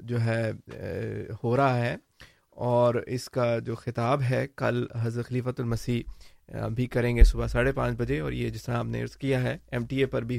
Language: Urdu